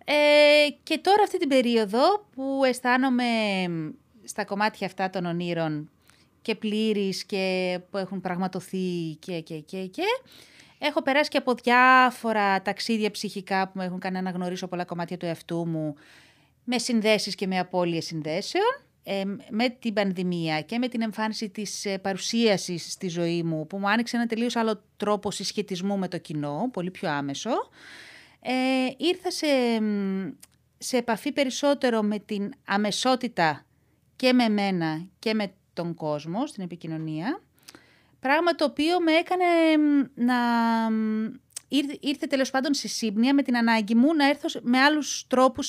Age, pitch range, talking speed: 30-49, 185-255 Hz, 150 wpm